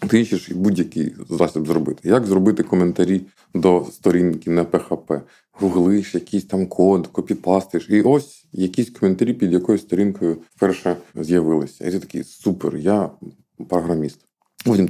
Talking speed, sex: 135 wpm, male